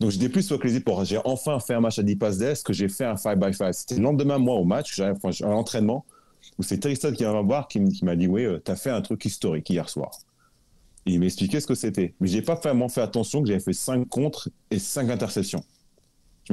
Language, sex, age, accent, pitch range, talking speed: French, male, 30-49, French, 90-125 Hz, 255 wpm